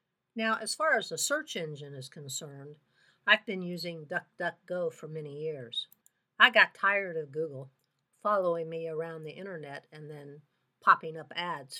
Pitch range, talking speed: 160-205 Hz, 160 wpm